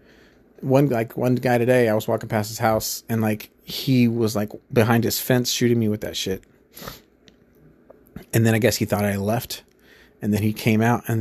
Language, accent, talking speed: English, American, 205 wpm